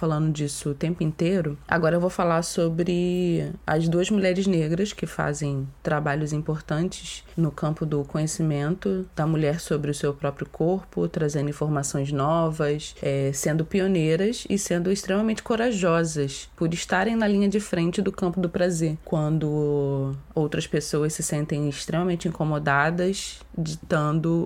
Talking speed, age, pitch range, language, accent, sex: 140 wpm, 20-39, 150-175 Hz, Portuguese, Brazilian, female